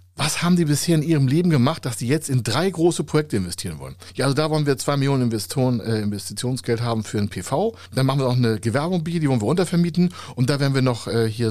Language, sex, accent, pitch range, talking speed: German, male, German, 100-150 Hz, 245 wpm